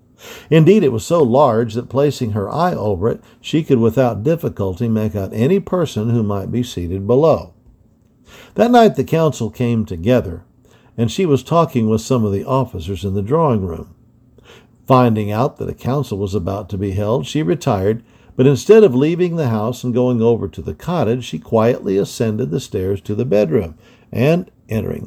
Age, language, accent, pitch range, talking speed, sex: 60-79, English, American, 105-135 Hz, 185 wpm, male